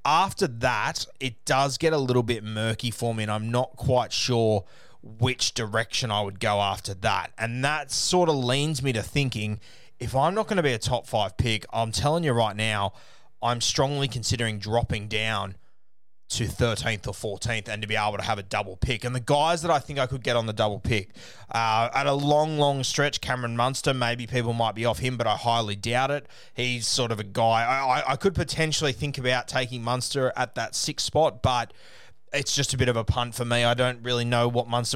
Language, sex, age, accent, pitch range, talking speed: English, male, 20-39, Australian, 110-130 Hz, 220 wpm